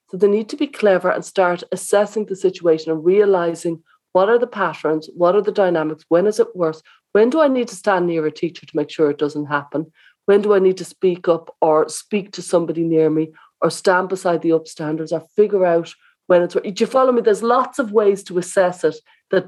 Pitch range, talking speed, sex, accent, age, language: 160-210 Hz, 235 wpm, female, Irish, 40-59, English